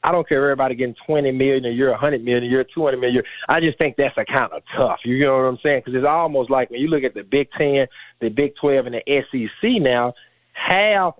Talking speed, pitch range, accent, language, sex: 235 wpm, 120-160 Hz, American, English, male